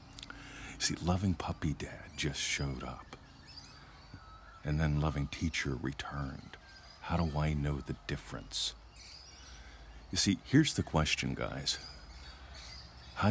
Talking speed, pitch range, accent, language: 115 wpm, 75-90 Hz, American, English